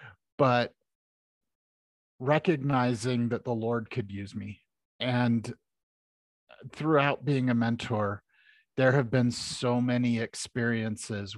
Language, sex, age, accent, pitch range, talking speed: English, male, 40-59, American, 105-130 Hz, 100 wpm